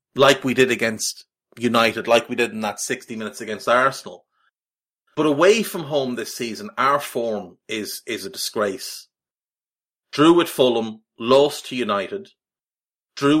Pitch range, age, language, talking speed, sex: 115-160 Hz, 30-49, English, 150 wpm, male